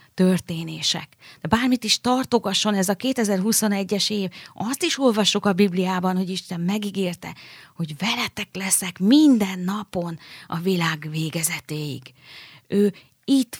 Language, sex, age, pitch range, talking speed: Hungarian, female, 30-49, 175-220 Hz, 120 wpm